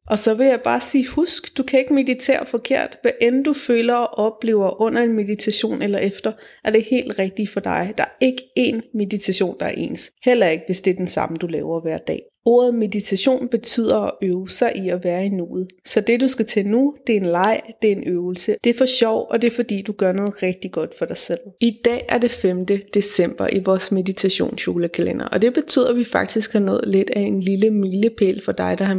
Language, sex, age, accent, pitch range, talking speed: Danish, female, 30-49, native, 190-235 Hz, 240 wpm